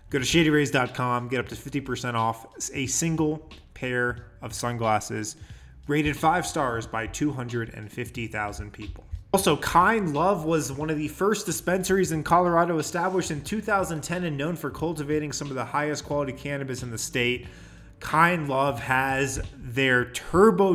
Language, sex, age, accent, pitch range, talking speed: English, male, 20-39, American, 120-155 Hz, 150 wpm